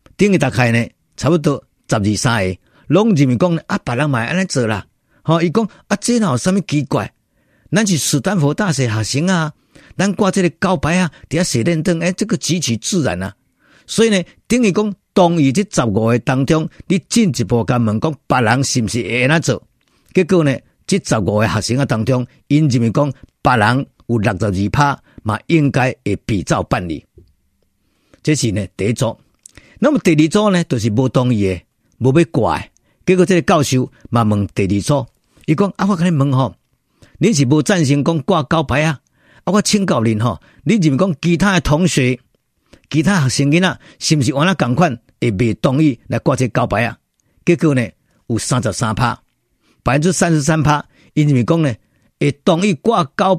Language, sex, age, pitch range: Chinese, male, 50-69, 120-175 Hz